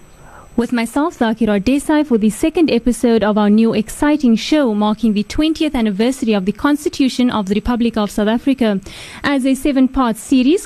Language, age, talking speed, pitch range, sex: English, 30-49, 170 wpm, 215-270 Hz, female